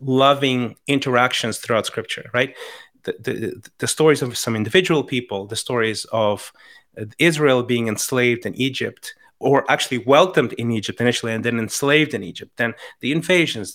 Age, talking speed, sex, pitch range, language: 30-49, 155 wpm, male, 115-155 Hz, English